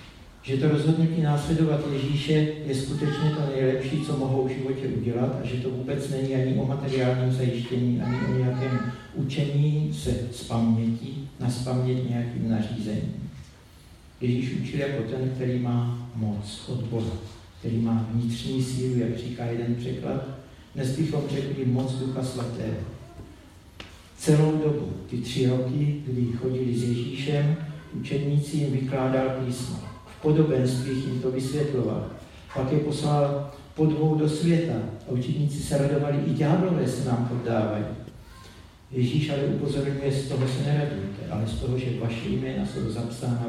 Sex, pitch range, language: male, 115-140 Hz, Czech